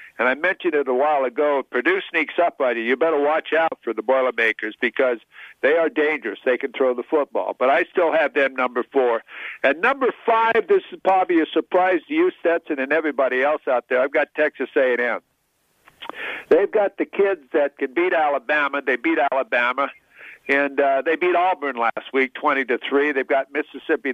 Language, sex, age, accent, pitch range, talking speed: English, male, 60-79, American, 140-195 Hz, 200 wpm